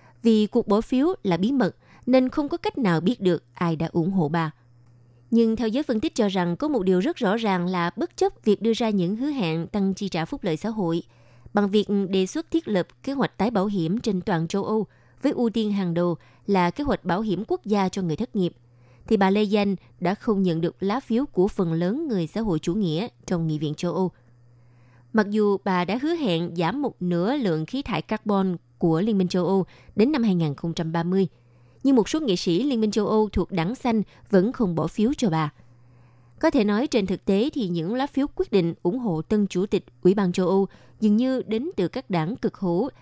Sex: female